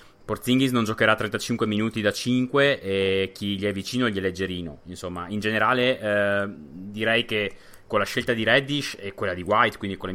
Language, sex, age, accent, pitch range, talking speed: Italian, male, 20-39, native, 100-115 Hz, 195 wpm